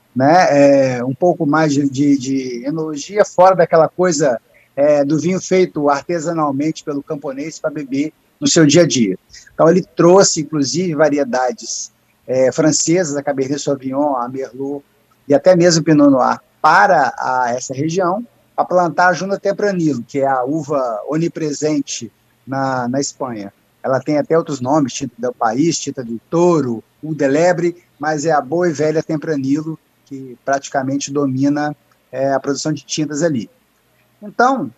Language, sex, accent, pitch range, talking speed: Portuguese, male, Brazilian, 140-180 Hz, 145 wpm